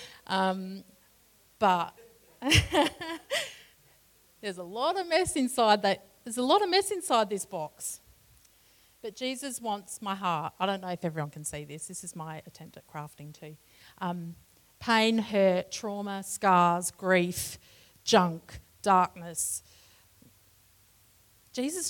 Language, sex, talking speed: English, female, 125 wpm